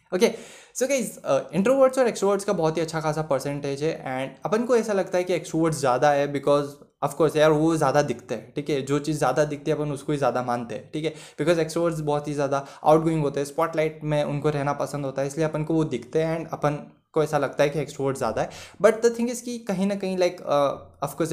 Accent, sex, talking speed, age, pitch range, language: native, male, 240 wpm, 20-39, 145-180 Hz, Hindi